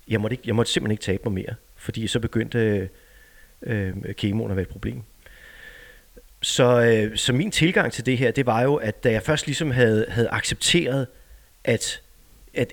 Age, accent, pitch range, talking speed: 30-49, native, 105-145 Hz, 195 wpm